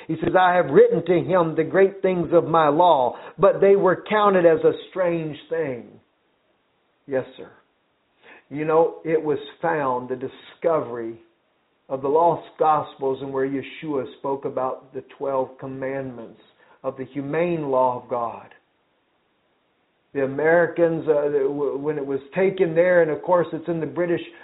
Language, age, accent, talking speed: English, 50-69, American, 155 wpm